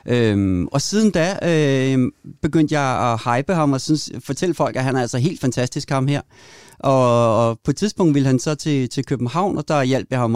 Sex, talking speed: male, 220 wpm